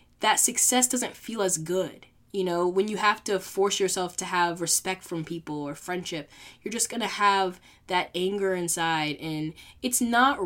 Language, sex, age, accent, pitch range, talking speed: English, female, 20-39, American, 175-235 Hz, 185 wpm